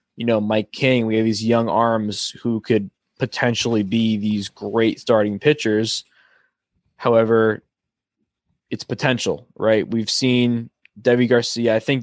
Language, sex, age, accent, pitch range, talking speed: English, male, 20-39, American, 105-125 Hz, 135 wpm